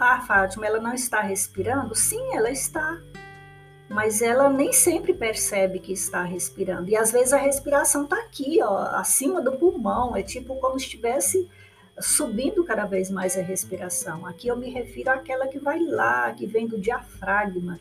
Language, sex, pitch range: Portuguese, female, 185-275 Hz